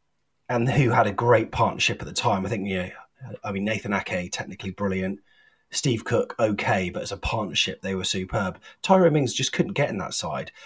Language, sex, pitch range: English, male, 100-125 Hz